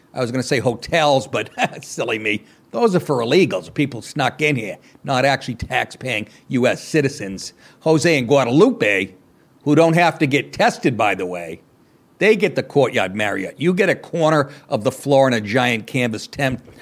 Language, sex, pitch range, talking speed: English, male, 130-180 Hz, 180 wpm